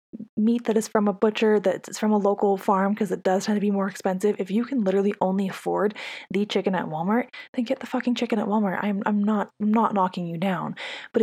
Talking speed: 240 wpm